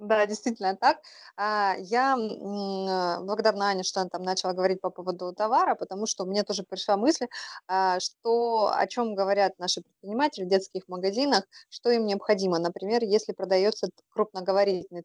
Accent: native